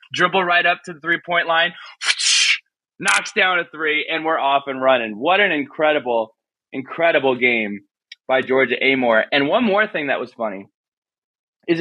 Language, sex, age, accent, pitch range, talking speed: English, male, 20-39, American, 120-175 Hz, 170 wpm